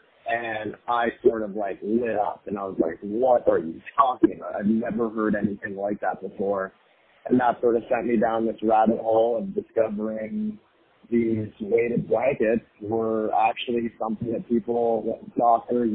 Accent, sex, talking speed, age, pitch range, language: American, male, 165 wpm, 30-49, 105-120 Hz, English